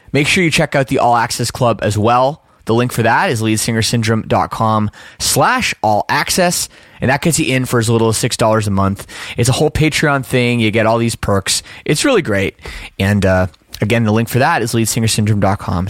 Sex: male